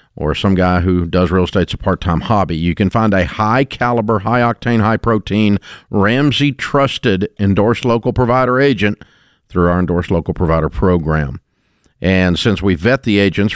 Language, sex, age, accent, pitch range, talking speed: English, male, 50-69, American, 90-110 Hz, 150 wpm